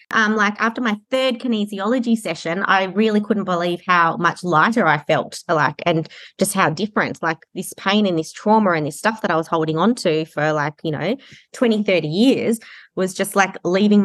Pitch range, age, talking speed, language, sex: 155-205 Hz, 20-39, 200 wpm, English, female